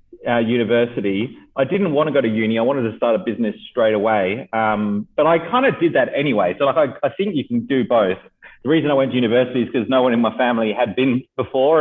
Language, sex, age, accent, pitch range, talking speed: English, male, 30-49, Australian, 110-130 Hz, 255 wpm